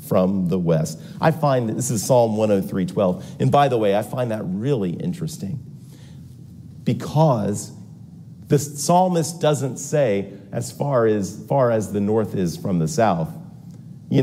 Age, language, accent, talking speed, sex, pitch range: 40-59, English, American, 155 wpm, male, 105-155 Hz